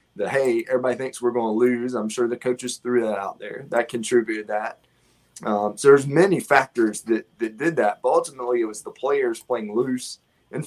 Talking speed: 210 wpm